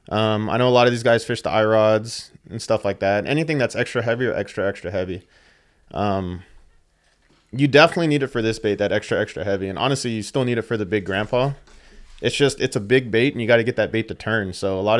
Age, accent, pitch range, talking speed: 20-39, American, 100-125 Hz, 250 wpm